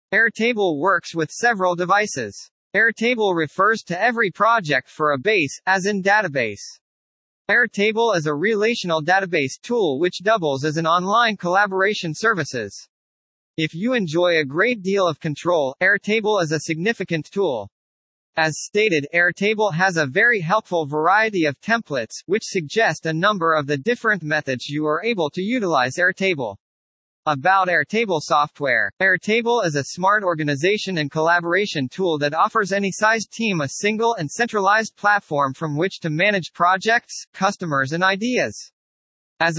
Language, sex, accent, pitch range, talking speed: English, male, American, 155-210 Hz, 145 wpm